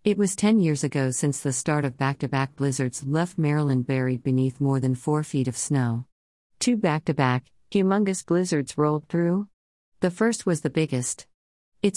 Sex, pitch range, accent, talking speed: female, 130-165 Hz, American, 165 wpm